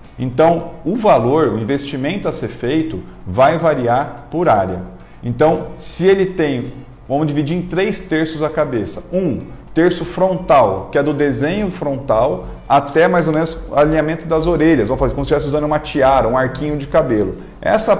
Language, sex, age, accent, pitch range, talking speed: Portuguese, male, 40-59, Brazilian, 125-165 Hz, 170 wpm